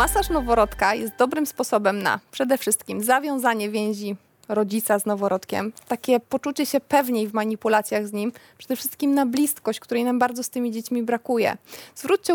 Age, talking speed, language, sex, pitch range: 20-39, 160 wpm, Polish, female, 220-275 Hz